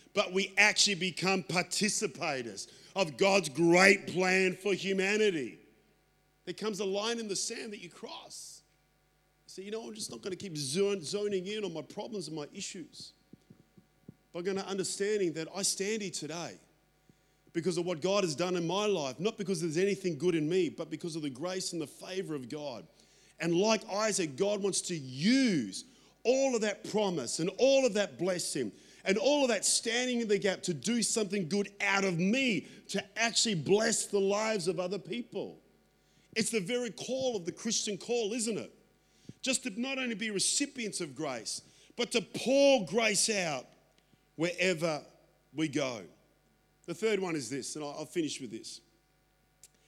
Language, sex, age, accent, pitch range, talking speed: English, male, 40-59, Australian, 180-220 Hz, 180 wpm